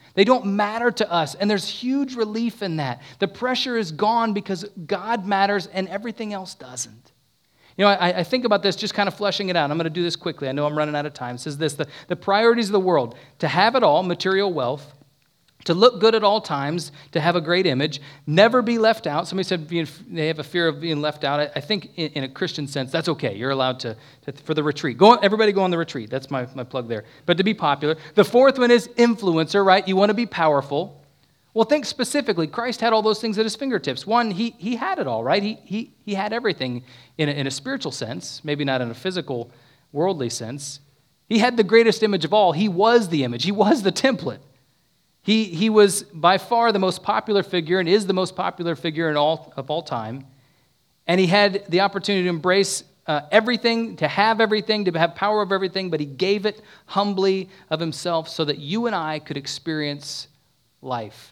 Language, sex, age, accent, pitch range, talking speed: English, male, 40-59, American, 145-210 Hz, 230 wpm